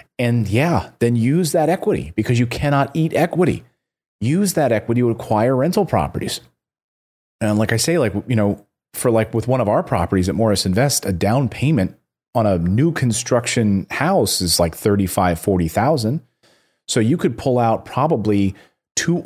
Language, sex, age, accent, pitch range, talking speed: English, male, 30-49, American, 95-125 Hz, 170 wpm